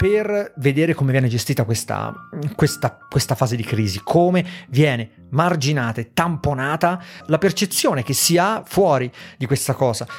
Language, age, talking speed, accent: Italian, 30-49, 145 wpm, native